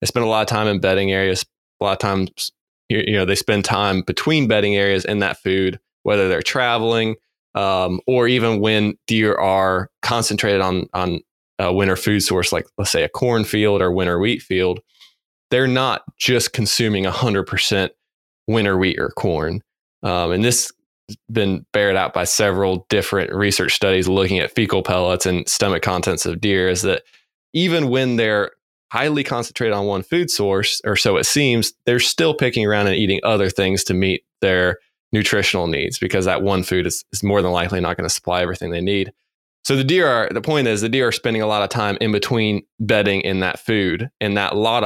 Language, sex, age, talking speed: English, male, 20-39, 200 wpm